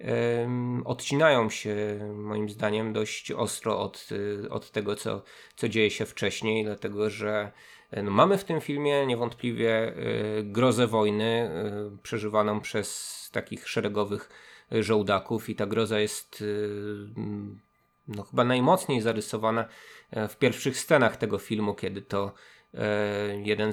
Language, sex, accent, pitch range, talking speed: Polish, male, native, 105-120 Hz, 110 wpm